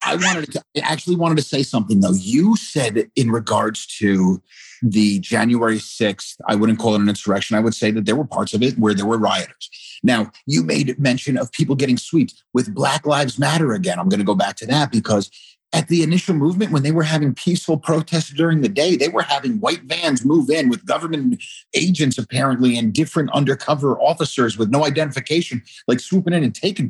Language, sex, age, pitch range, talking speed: English, male, 40-59, 105-155 Hz, 210 wpm